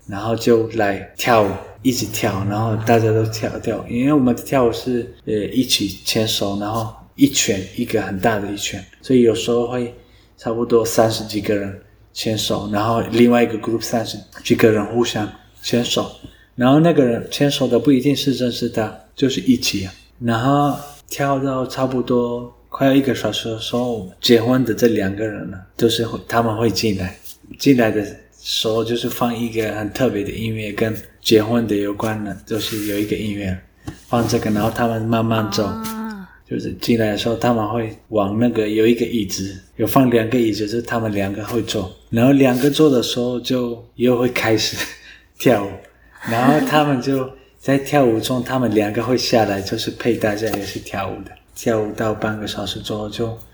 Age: 20-39